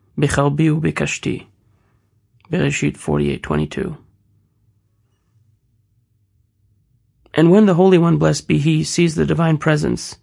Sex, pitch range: male, 105-160 Hz